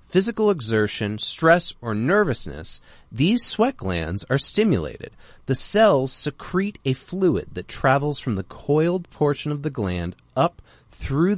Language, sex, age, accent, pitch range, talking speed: English, male, 30-49, American, 100-145 Hz, 135 wpm